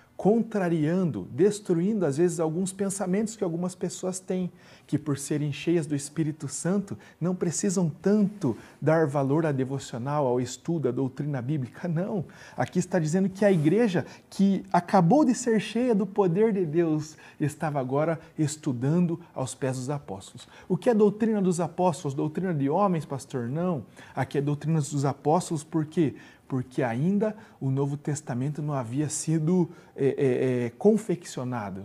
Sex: male